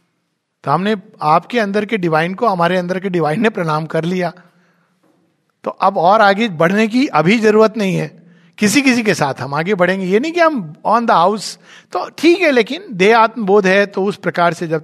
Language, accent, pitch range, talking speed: Hindi, native, 160-225 Hz, 205 wpm